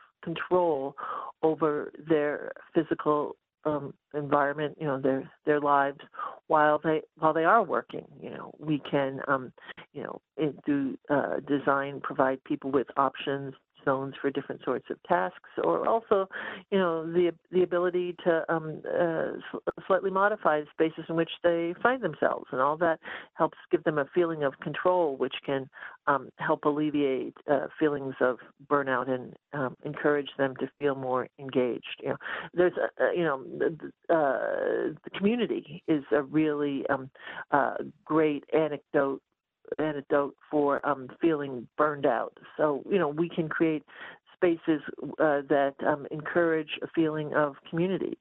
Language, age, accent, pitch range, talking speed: English, 50-69, American, 140-165 Hz, 155 wpm